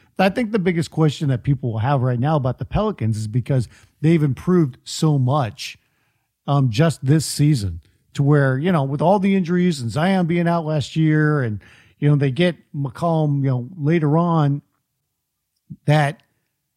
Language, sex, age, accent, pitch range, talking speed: English, male, 50-69, American, 125-170 Hz, 175 wpm